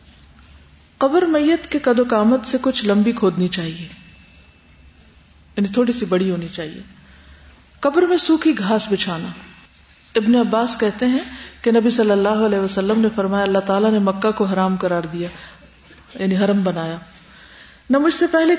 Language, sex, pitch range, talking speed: Urdu, female, 180-235 Hz, 160 wpm